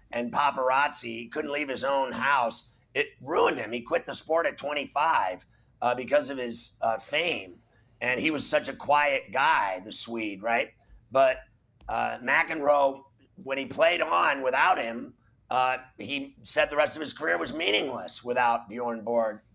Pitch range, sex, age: 120-145 Hz, male, 30-49